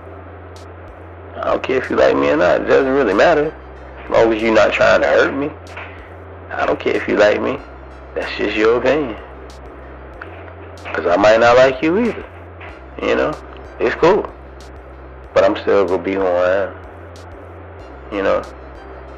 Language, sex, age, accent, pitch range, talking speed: English, male, 30-49, American, 65-105 Hz, 170 wpm